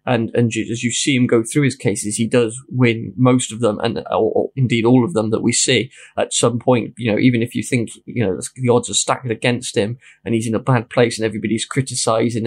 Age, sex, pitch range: 20-39, male, 110-125 Hz